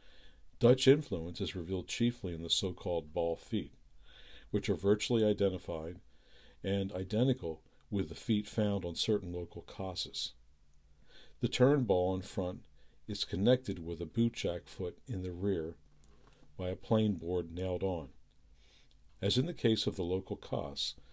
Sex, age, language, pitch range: male, 60-79, English, 80-105 Hz